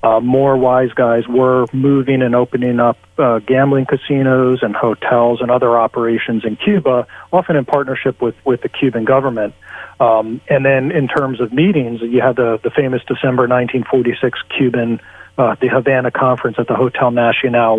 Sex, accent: male, American